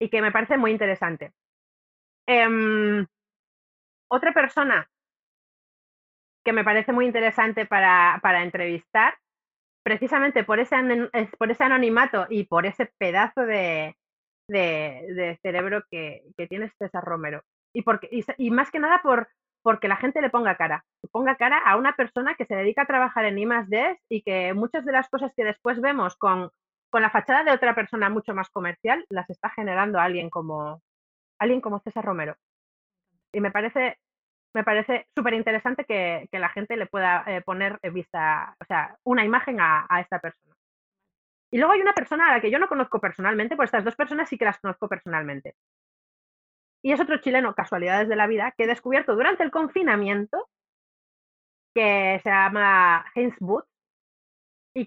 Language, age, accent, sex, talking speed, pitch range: Spanish, 30-49, Spanish, female, 165 wpm, 190-250 Hz